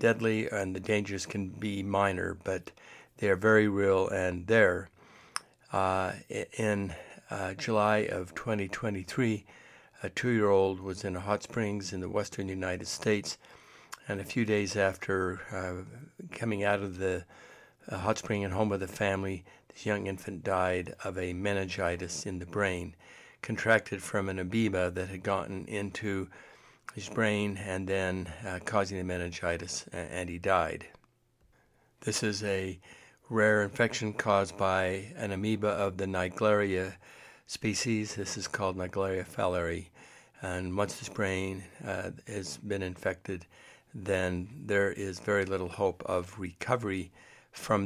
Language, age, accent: English, 60-79, American